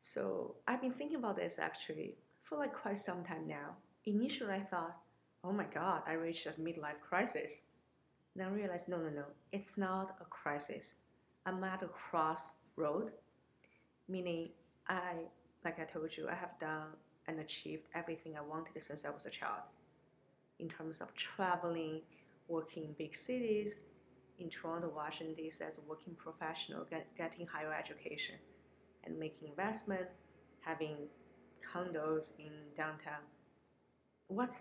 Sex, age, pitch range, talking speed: female, 30-49, 160-190 Hz, 145 wpm